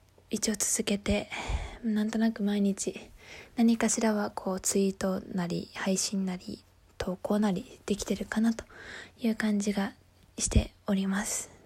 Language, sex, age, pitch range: Japanese, female, 20-39, 205-255 Hz